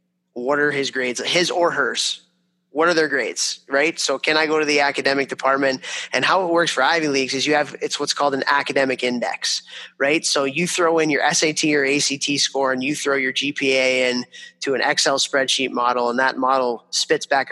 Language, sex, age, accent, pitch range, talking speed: English, male, 20-39, American, 130-160 Hz, 210 wpm